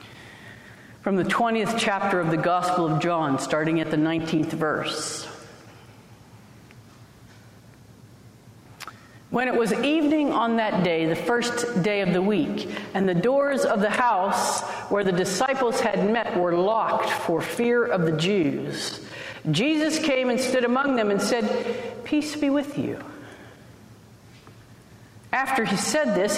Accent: American